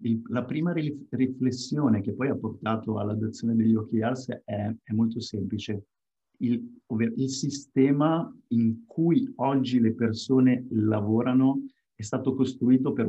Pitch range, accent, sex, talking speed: 110-125 Hz, native, male, 135 wpm